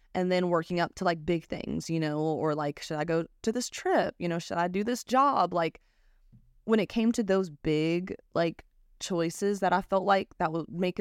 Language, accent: English, American